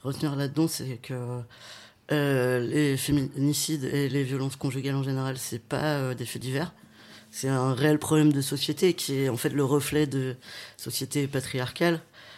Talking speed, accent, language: 170 wpm, French, French